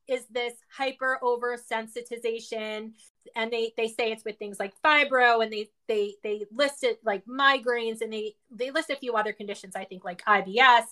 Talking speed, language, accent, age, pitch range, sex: 180 wpm, English, American, 20-39, 230-300 Hz, female